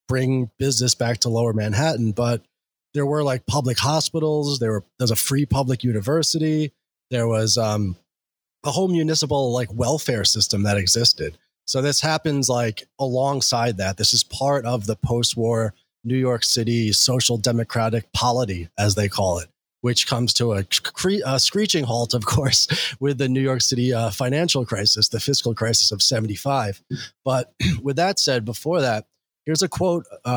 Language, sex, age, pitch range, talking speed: English, male, 30-49, 110-145 Hz, 165 wpm